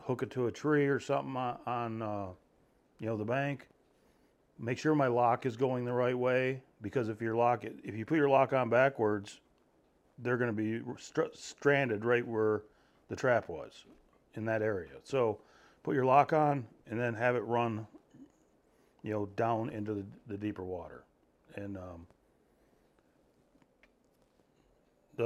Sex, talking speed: male, 165 wpm